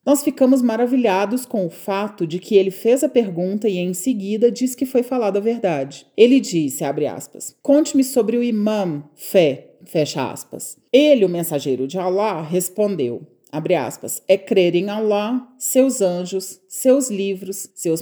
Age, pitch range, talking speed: 40-59, 175-240 Hz, 165 wpm